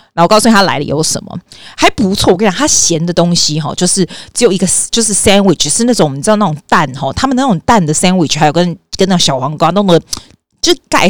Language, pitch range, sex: Chinese, 160-210 Hz, female